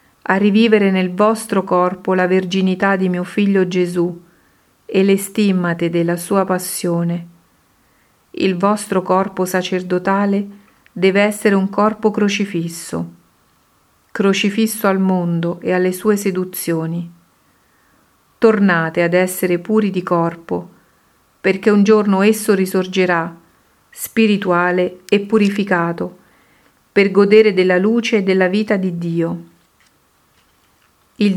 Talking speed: 110 wpm